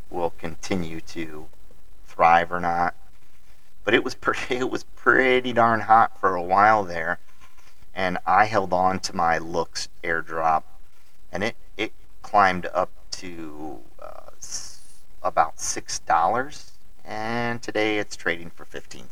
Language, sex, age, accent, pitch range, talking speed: English, male, 40-59, American, 80-100 Hz, 130 wpm